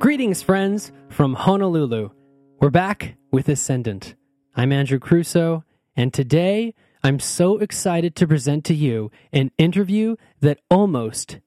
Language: English